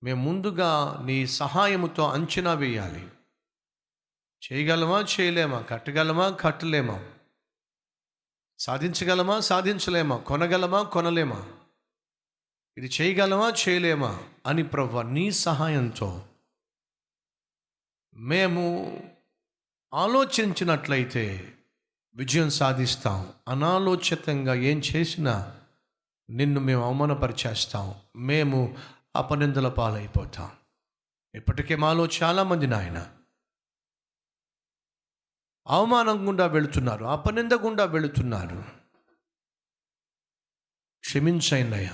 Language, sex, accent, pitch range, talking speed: Telugu, male, native, 125-175 Hz, 65 wpm